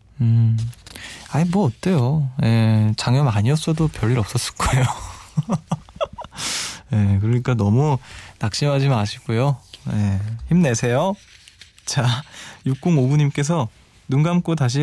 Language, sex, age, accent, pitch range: Korean, male, 20-39, native, 110-140 Hz